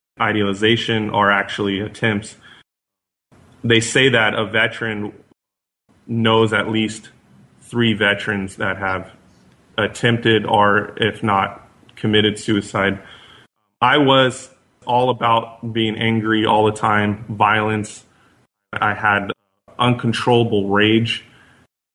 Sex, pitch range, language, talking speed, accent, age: male, 105-120 Hz, English, 100 wpm, American, 20-39